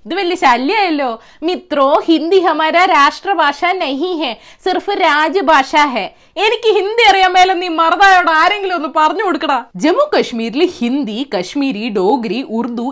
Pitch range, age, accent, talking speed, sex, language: 235-355 Hz, 20-39, native, 65 wpm, female, Malayalam